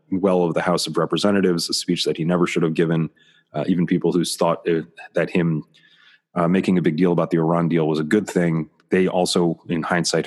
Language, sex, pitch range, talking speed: English, male, 85-95 Hz, 230 wpm